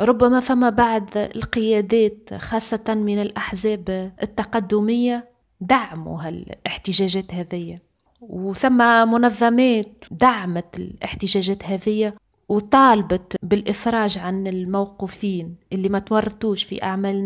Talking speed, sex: 85 wpm, female